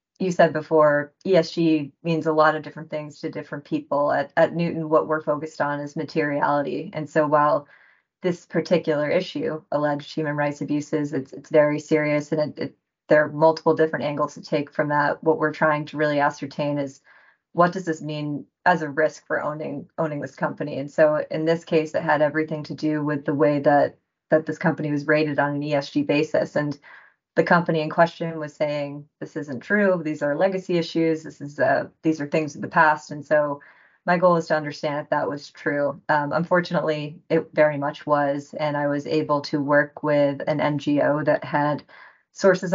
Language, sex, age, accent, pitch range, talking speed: English, female, 20-39, American, 145-160 Hz, 200 wpm